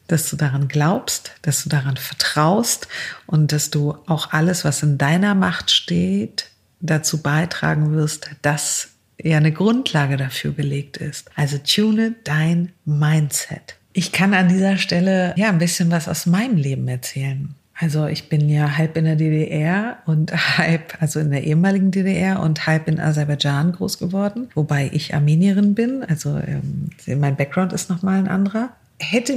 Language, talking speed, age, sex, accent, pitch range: German, 160 wpm, 50-69, female, German, 150-185 Hz